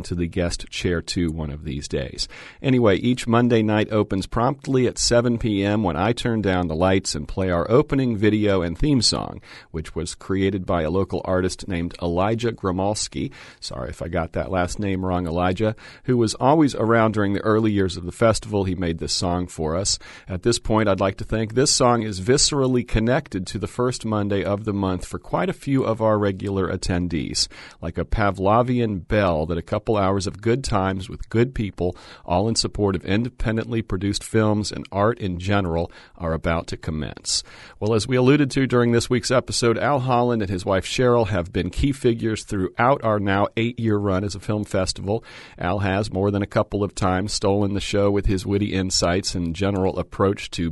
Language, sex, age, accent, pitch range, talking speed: English, male, 40-59, American, 90-115 Hz, 200 wpm